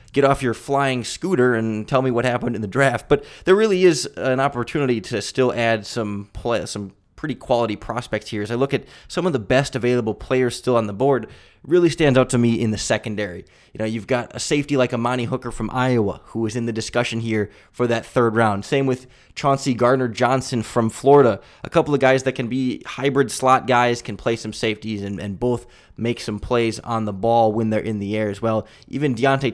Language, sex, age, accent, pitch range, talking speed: English, male, 20-39, American, 110-130 Hz, 225 wpm